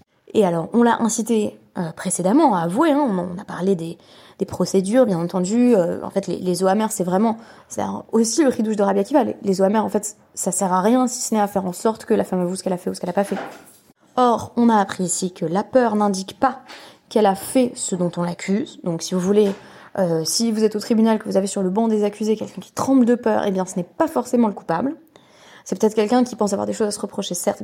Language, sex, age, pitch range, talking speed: French, female, 20-39, 185-235 Hz, 275 wpm